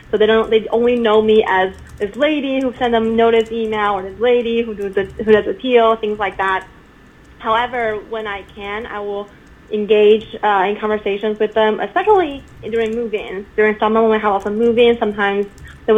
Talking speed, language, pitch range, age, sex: 195 wpm, English, 205-235 Hz, 20-39, female